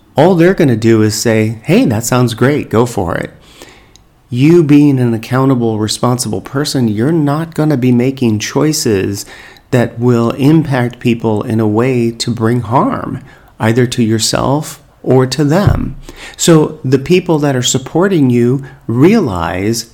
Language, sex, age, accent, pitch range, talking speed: English, male, 40-59, American, 110-135 Hz, 155 wpm